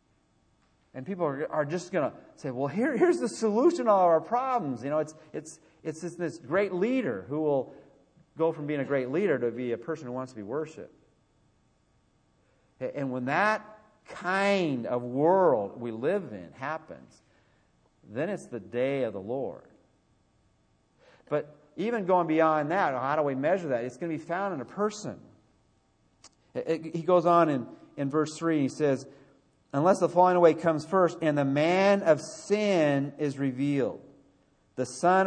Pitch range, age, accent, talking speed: 140-175 Hz, 40-59, American, 165 wpm